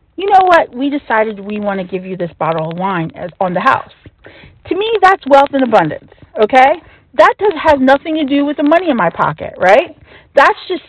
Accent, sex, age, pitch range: American, female, 40-59, 200-280 Hz